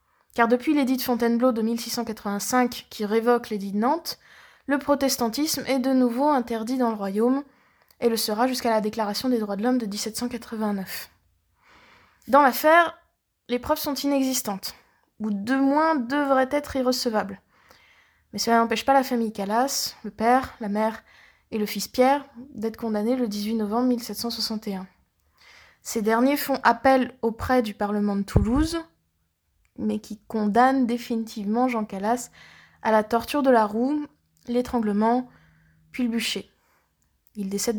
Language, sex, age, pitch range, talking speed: French, female, 20-39, 210-265 Hz, 150 wpm